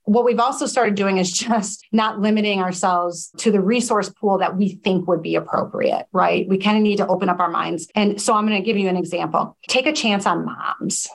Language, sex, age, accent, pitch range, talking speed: English, female, 40-59, American, 185-225 Hz, 235 wpm